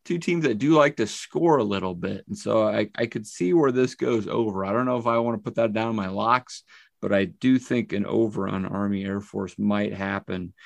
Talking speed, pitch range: 255 wpm, 100-120 Hz